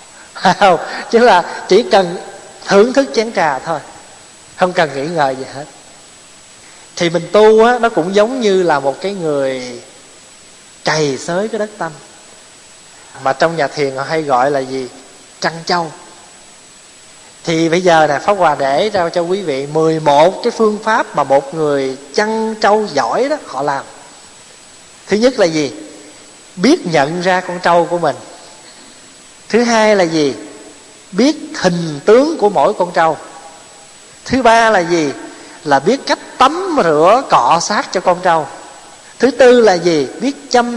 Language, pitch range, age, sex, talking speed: Vietnamese, 155-225 Hz, 20-39, male, 160 wpm